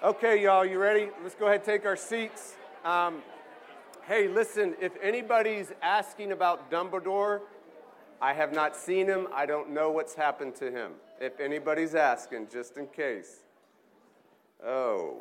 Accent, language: American, English